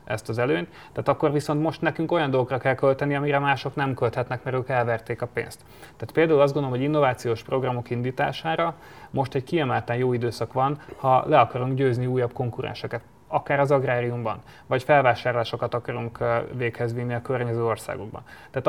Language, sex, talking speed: Hungarian, male, 165 wpm